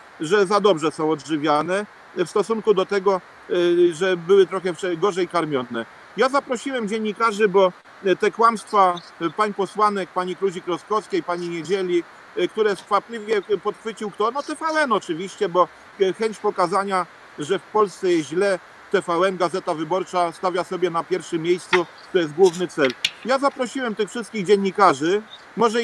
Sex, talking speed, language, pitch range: male, 140 wpm, Polish, 180-220 Hz